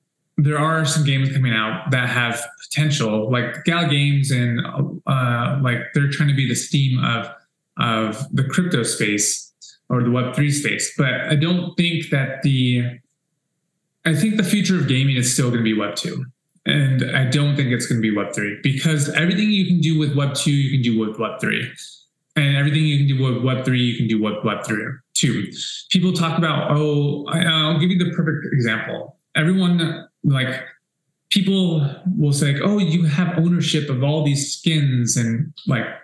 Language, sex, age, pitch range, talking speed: English, male, 20-39, 130-165 Hz, 190 wpm